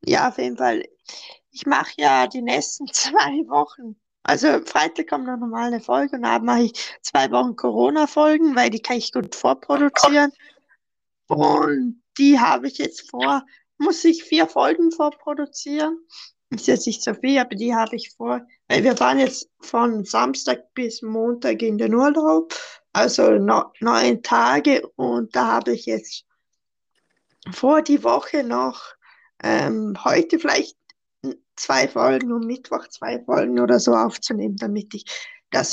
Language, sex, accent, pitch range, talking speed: German, female, German, 200-290 Hz, 155 wpm